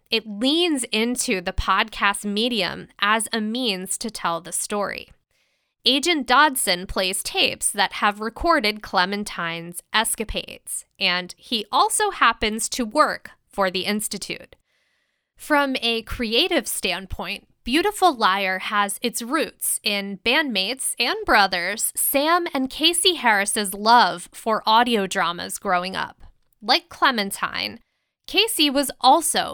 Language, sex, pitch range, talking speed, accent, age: English, female, 205-270 Hz, 120 wpm, American, 10-29